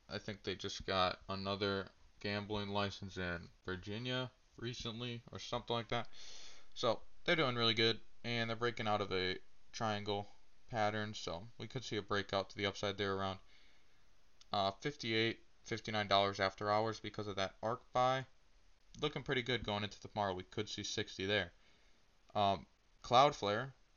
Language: English